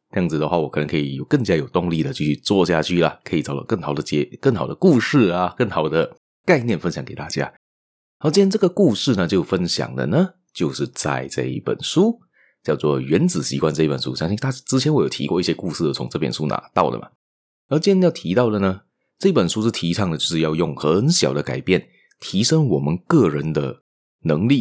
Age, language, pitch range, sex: 30-49, Chinese, 75-115 Hz, male